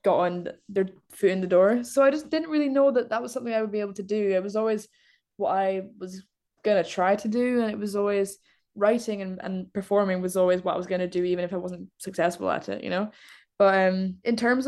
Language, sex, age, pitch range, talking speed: English, female, 10-29, 185-215 Hz, 250 wpm